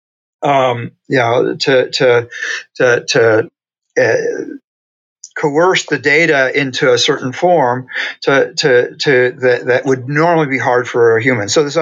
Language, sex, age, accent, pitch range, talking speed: English, male, 50-69, American, 125-175 Hz, 145 wpm